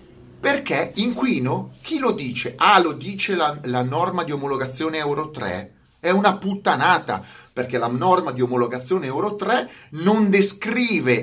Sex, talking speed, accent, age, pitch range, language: male, 145 wpm, native, 30-49, 125-200 Hz, Italian